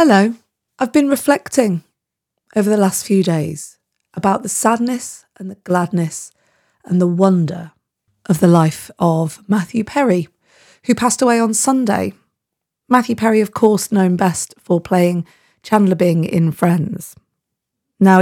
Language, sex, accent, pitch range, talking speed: English, female, British, 175-225 Hz, 140 wpm